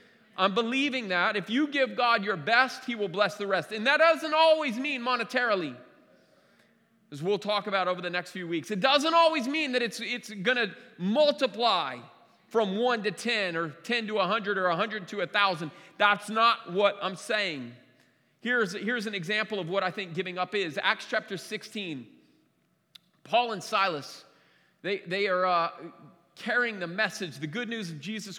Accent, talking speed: American, 185 wpm